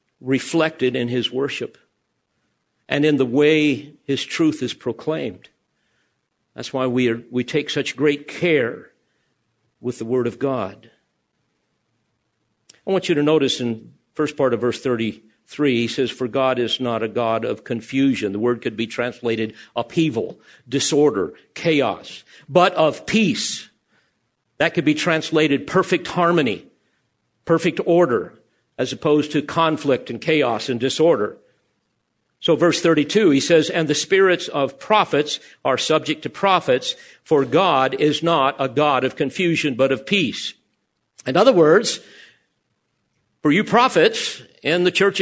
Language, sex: English, male